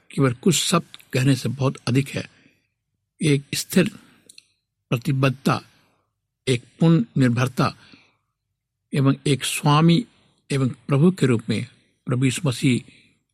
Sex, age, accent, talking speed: male, 60-79, native, 110 wpm